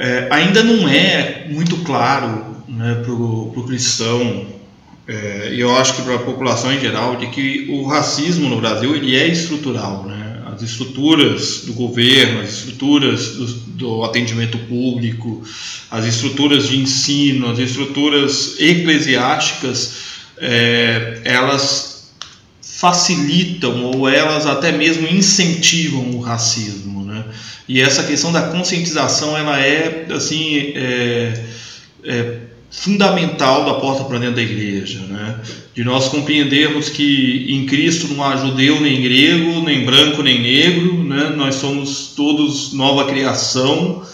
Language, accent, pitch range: Portuguese, Brazilian, 120-150 Hz